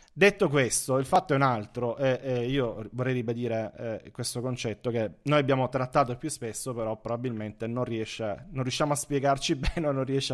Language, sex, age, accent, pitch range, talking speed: Italian, male, 30-49, native, 115-135 Hz, 190 wpm